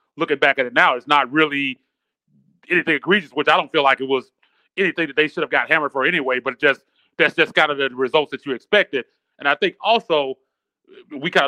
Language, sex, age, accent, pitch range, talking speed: English, male, 30-49, American, 135-165 Hz, 230 wpm